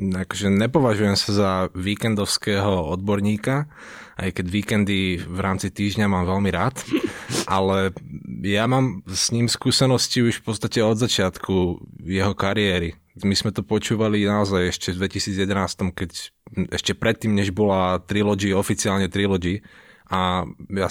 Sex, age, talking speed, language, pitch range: male, 20-39, 130 wpm, Slovak, 95-110 Hz